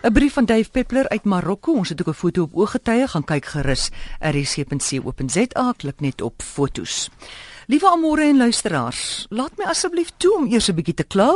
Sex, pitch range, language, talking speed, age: female, 150-245 Hz, Dutch, 200 wpm, 50-69